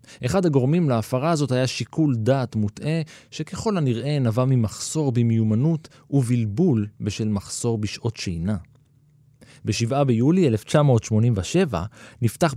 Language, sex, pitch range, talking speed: Hebrew, male, 110-145 Hz, 105 wpm